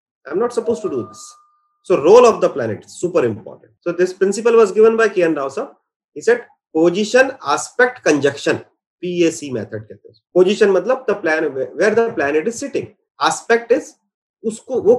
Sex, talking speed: male, 180 wpm